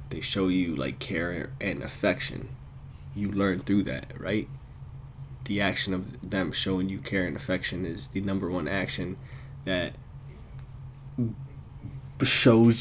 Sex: male